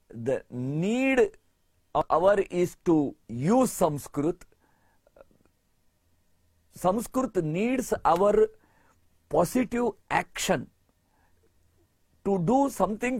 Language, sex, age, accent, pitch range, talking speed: English, male, 50-69, Indian, 155-230 Hz, 70 wpm